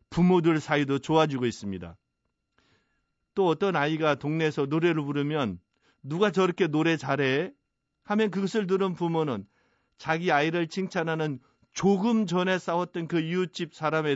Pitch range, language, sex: 130-165 Hz, Korean, male